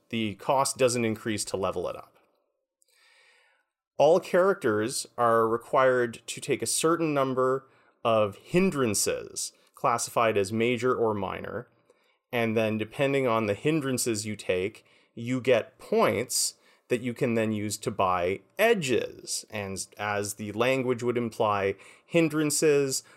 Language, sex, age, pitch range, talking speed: English, male, 30-49, 105-135 Hz, 130 wpm